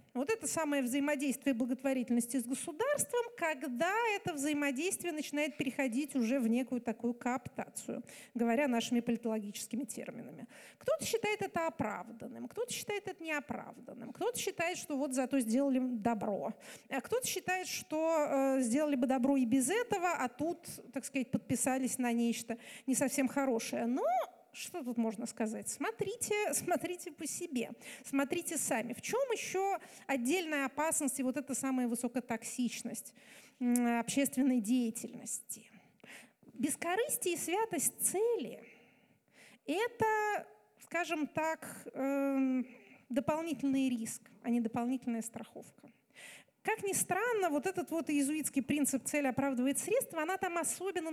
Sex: female